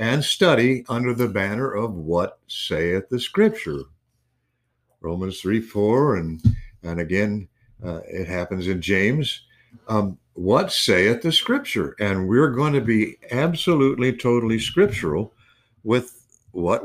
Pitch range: 95-125 Hz